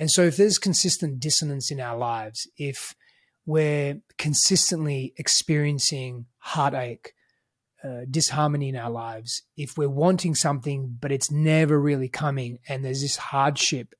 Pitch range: 135-155 Hz